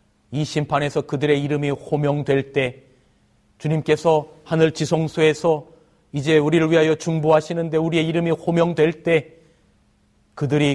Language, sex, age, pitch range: Korean, male, 40-59, 125-165 Hz